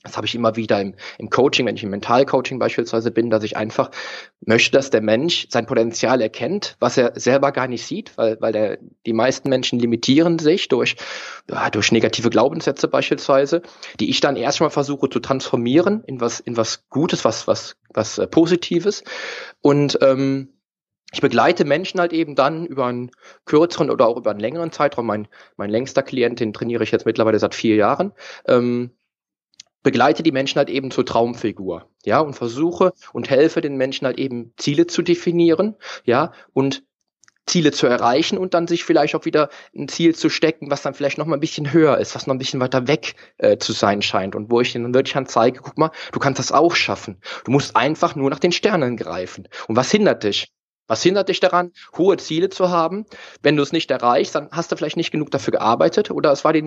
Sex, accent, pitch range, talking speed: male, German, 120-170 Hz, 205 wpm